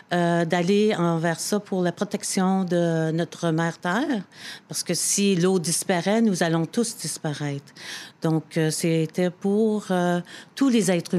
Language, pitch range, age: French, 170-200 Hz, 50-69